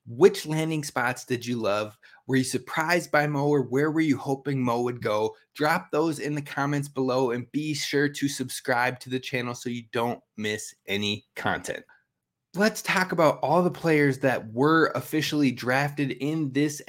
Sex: male